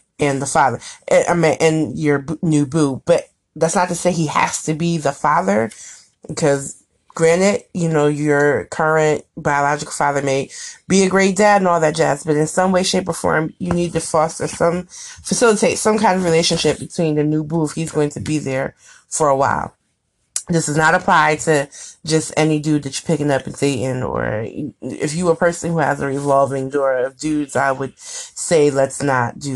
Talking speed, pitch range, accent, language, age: 200 wpm, 140-165 Hz, American, English, 30-49